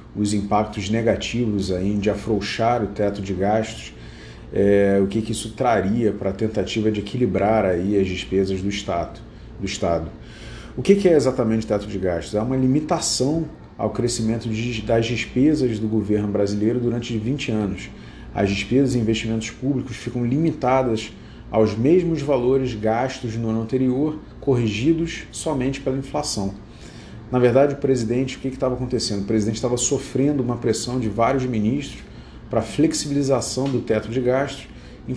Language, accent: Portuguese, Brazilian